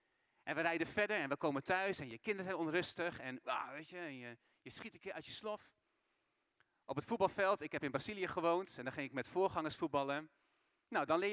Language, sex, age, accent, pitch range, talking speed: Dutch, male, 40-59, Dutch, 130-205 Hz, 235 wpm